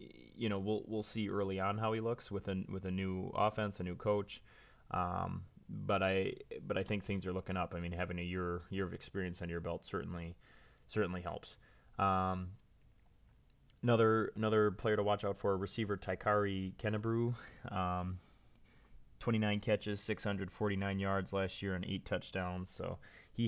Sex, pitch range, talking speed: male, 90-105 Hz, 180 wpm